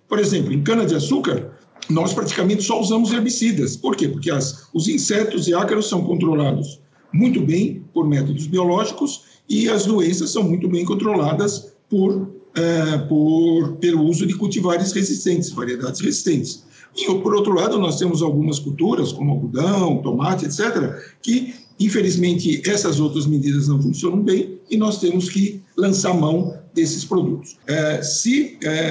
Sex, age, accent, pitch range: male, 60-79, Brazilian, 155-200 Hz